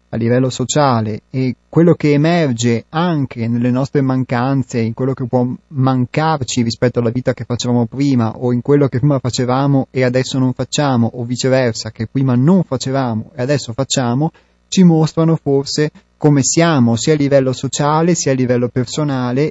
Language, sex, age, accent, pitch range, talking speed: Italian, male, 30-49, native, 120-145 Hz, 165 wpm